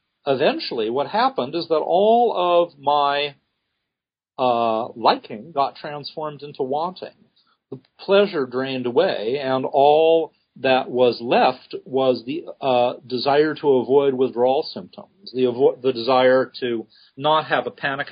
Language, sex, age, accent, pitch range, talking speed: English, male, 40-59, American, 125-175 Hz, 130 wpm